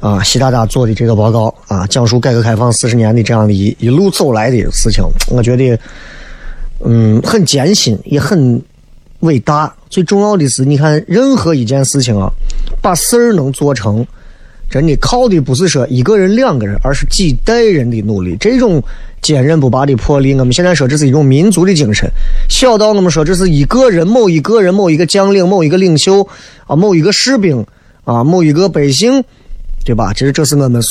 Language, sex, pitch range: Chinese, male, 115-170 Hz